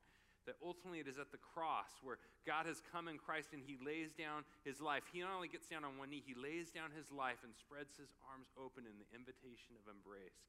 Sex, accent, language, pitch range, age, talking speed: male, American, English, 100-145 Hz, 40-59, 240 wpm